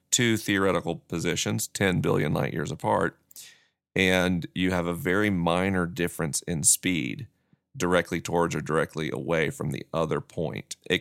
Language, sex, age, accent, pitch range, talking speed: English, male, 40-59, American, 85-100 Hz, 145 wpm